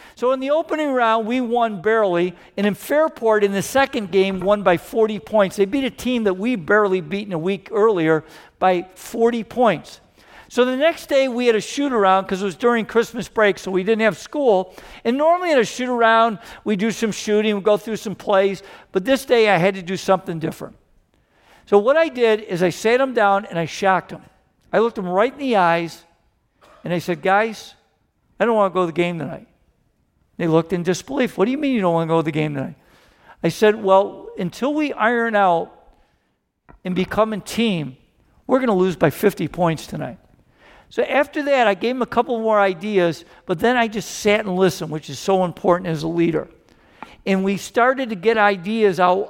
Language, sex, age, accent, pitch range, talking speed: English, male, 50-69, American, 180-230 Hz, 215 wpm